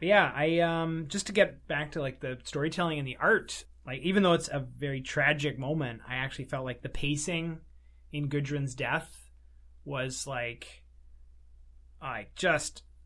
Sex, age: male, 20-39